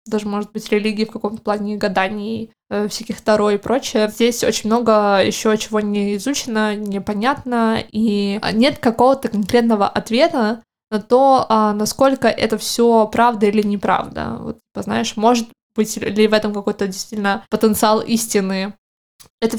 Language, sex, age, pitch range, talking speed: Russian, female, 20-39, 210-230 Hz, 140 wpm